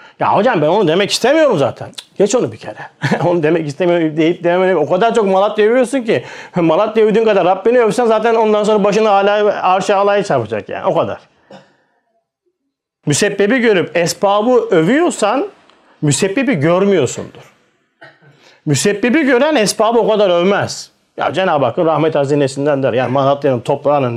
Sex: male